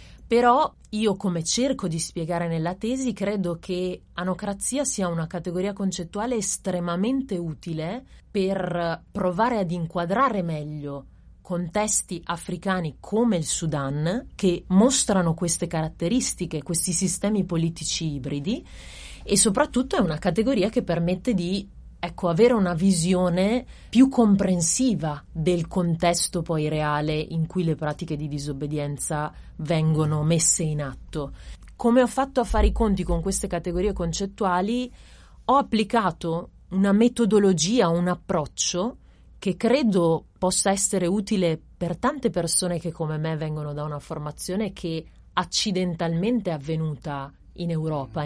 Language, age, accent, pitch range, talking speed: Italian, 30-49, native, 165-205 Hz, 125 wpm